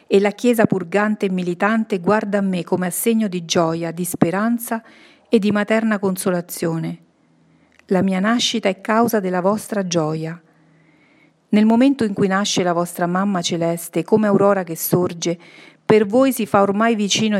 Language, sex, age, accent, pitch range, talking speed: Italian, female, 40-59, native, 175-210 Hz, 160 wpm